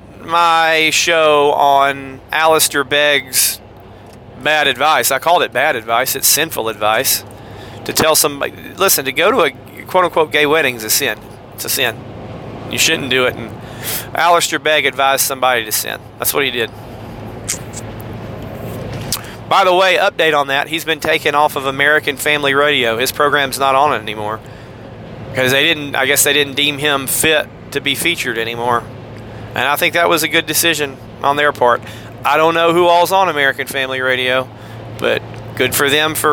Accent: American